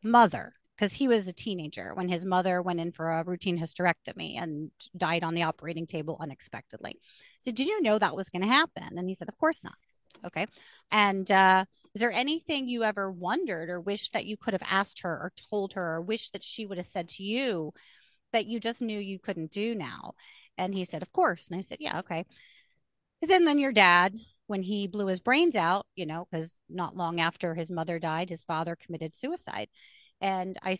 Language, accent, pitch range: English, American, 175-220 Hz